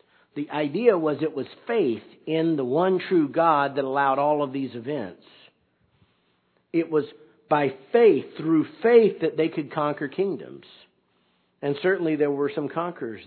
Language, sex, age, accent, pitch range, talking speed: English, male, 50-69, American, 120-155 Hz, 155 wpm